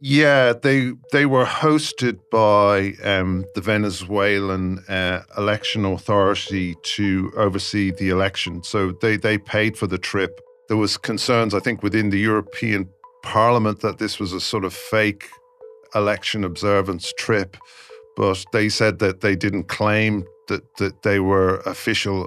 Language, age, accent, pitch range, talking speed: English, 50-69, British, 95-110 Hz, 145 wpm